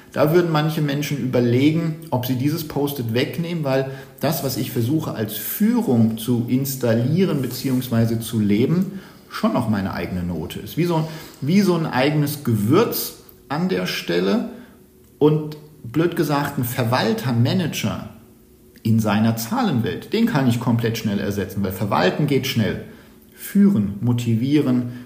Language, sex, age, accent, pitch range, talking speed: German, male, 50-69, German, 110-150 Hz, 140 wpm